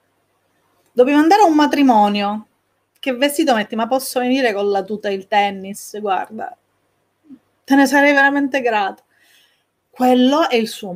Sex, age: female, 30-49